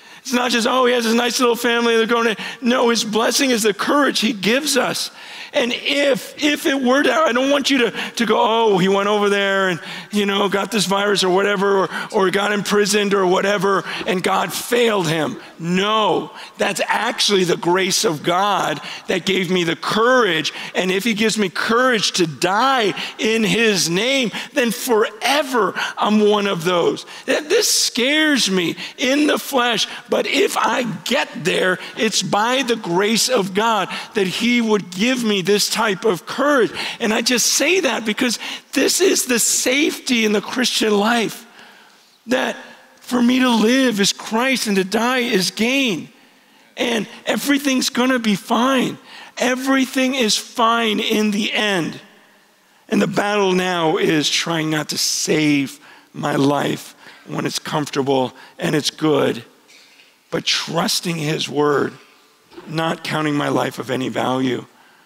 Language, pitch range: English, 190-250 Hz